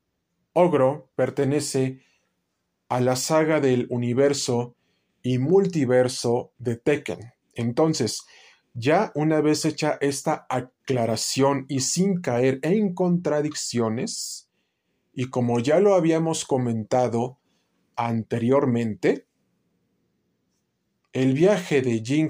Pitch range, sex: 120-155 Hz, male